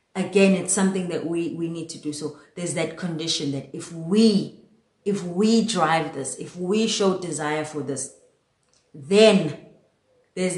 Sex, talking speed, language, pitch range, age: female, 160 wpm, English, 160-195 Hz, 30-49